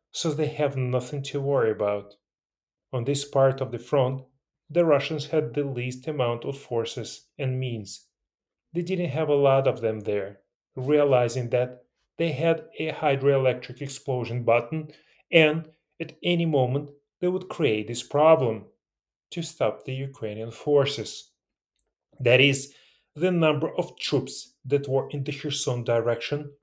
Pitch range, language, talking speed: 120-150 Hz, English, 145 wpm